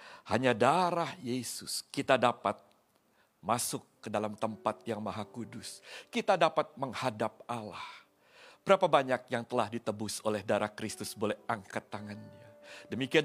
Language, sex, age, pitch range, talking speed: Indonesian, male, 50-69, 130-190 Hz, 125 wpm